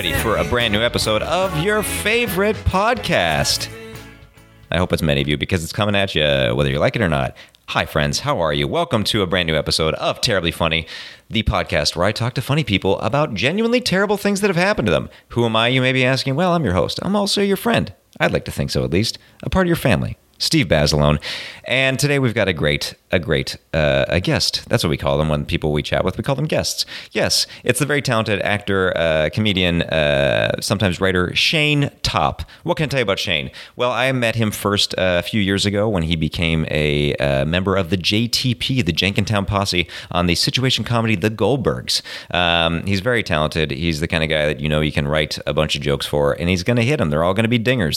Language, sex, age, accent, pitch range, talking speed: English, male, 40-59, American, 85-125 Hz, 240 wpm